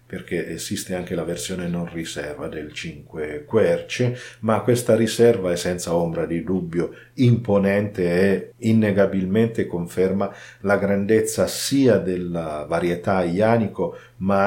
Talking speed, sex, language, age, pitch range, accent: 120 wpm, male, Italian, 40-59, 90-115 Hz, native